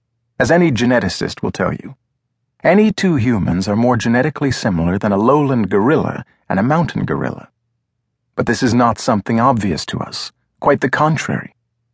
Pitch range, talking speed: 110-130 Hz, 160 wpm